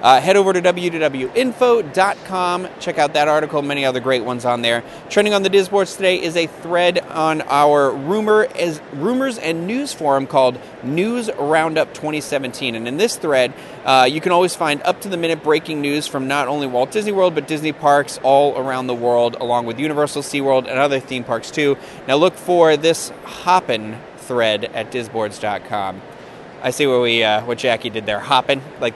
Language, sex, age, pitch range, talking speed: English, male, 30-49, 130-175 Hz, 180 wpm